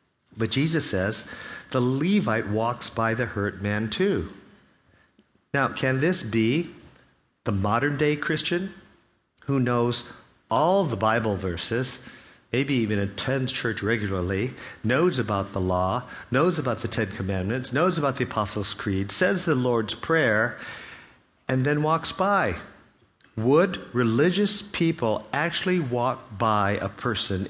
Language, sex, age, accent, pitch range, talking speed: English, male, 50-69, American, 105-145 Hz, 130 wpm